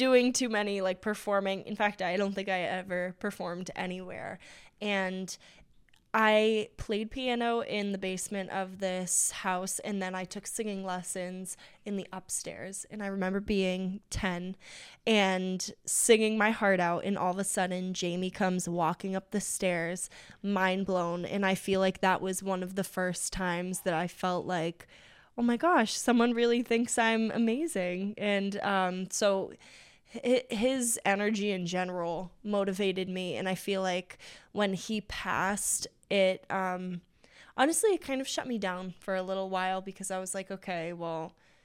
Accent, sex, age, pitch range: American, female, 10-29, 185-210 Hz